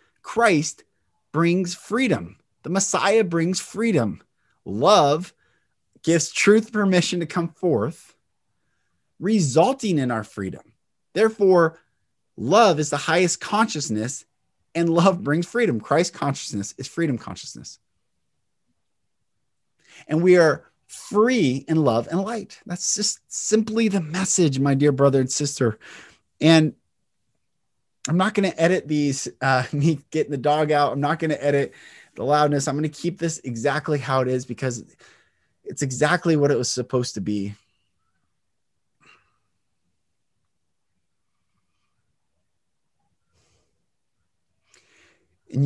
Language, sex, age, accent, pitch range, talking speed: English, male, 30-49, American, 115-175 Hz, 120 wpm